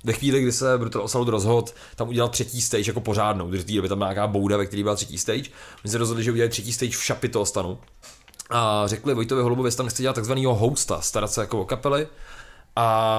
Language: Czech